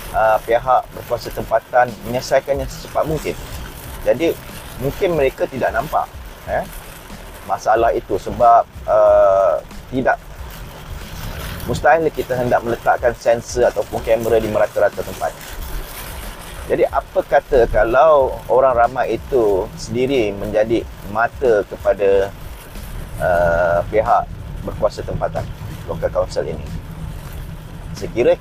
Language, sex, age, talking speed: Malay, male, 30-49, 100 wpm